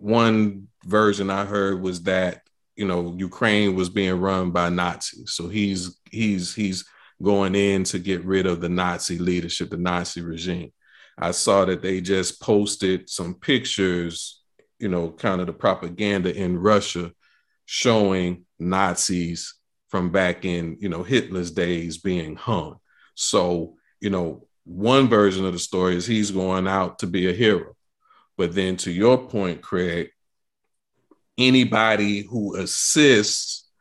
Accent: American